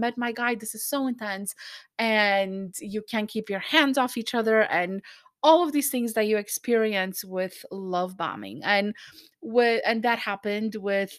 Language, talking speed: English, 170 wpm